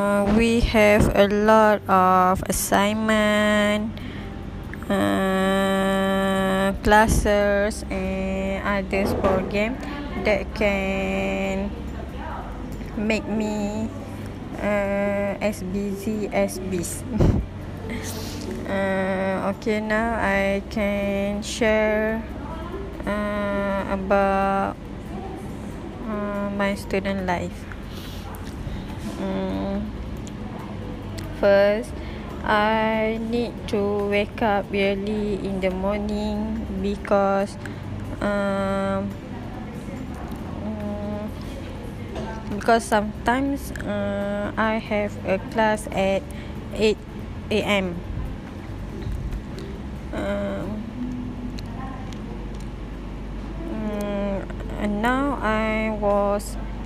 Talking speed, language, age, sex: 65 wpm, English, 20-39, female